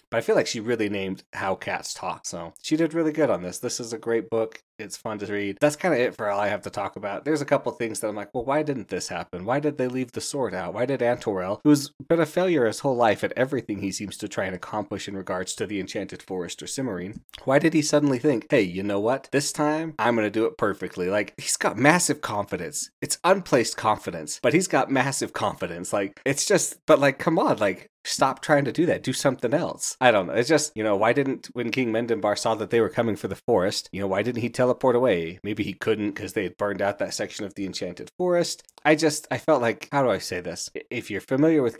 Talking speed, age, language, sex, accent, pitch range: 265 wpm, 30-49, English, male, American, 100-140 Hz